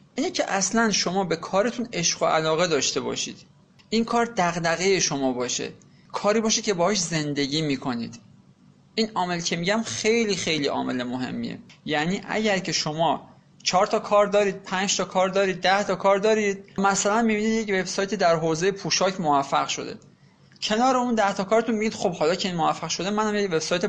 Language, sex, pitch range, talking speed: Persian, male, 160-215 Hz, 175 wpm